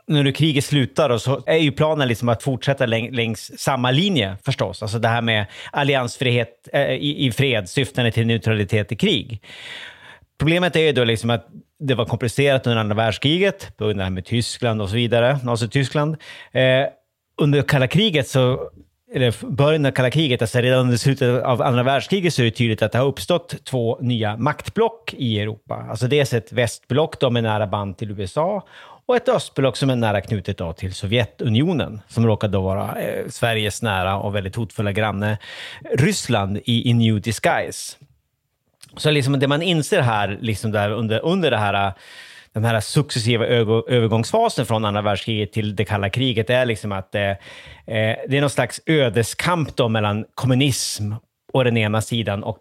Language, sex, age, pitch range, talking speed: Swedish, male, 30-49, 110-135 Hz, 180 wpm